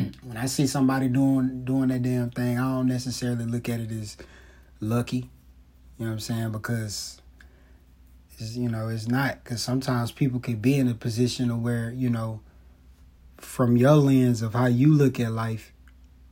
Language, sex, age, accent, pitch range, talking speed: English, male, 30-49, American, 95-125 Hz, 175 wpm